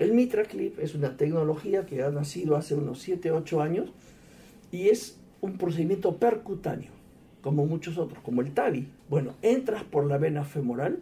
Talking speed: 165 wpm